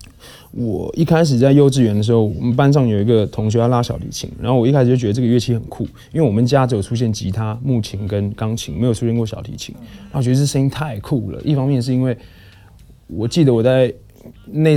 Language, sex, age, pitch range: Chinese, male, 20-39, 110-125 Hz